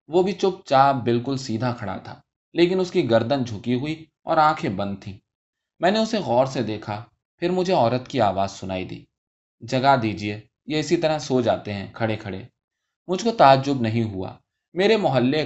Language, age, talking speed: Urdu, 20-39, 185 wpm